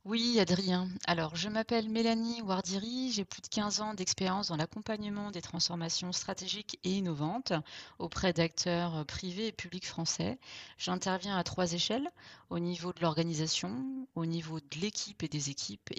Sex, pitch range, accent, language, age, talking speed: female, 165-210 Hz, French, French, 30-49, 155 wpm